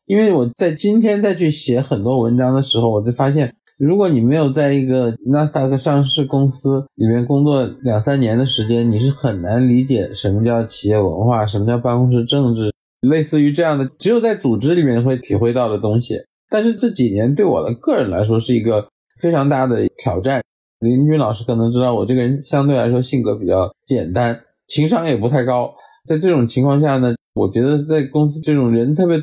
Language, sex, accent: Chinese, male, native